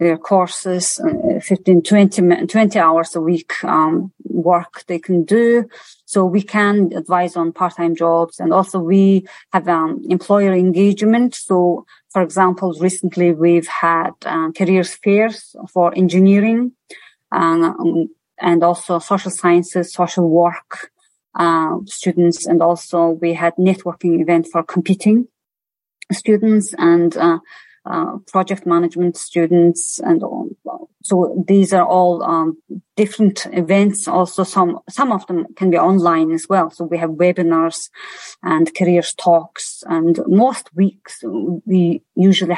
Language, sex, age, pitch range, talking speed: English, female, 30-49, 170-195 Hz, 130 wpm